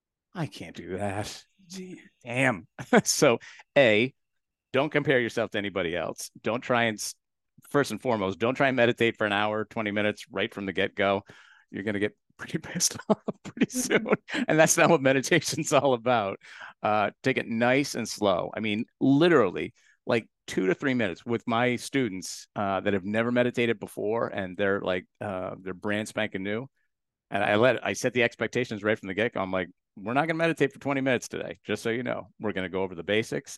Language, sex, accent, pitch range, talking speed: English, male, American, 95-125 Hz, 200 wpm